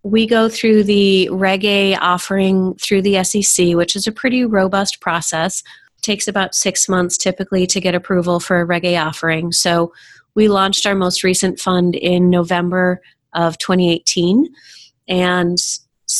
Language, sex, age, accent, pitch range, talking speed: English, female, 30-49, American, 175-205 Hz, 150 wpm